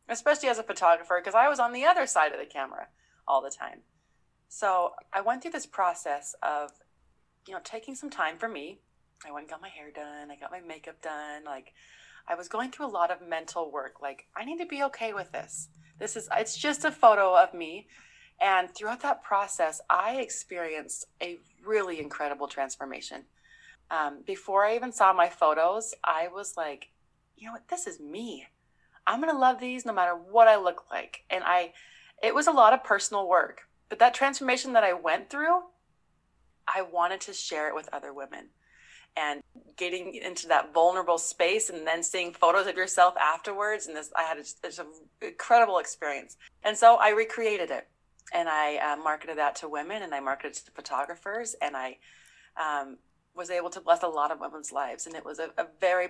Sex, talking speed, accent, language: female, 200 wpm, American, English